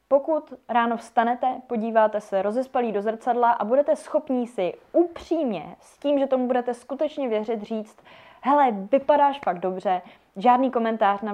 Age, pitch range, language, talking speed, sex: 20-39, 205-270 Hz, Czech, 150 wpm, female